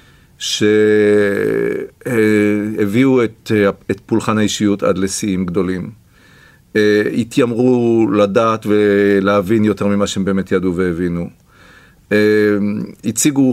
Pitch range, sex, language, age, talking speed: 100-130 Hz, male, Hebrew, 40-59, 80 wpm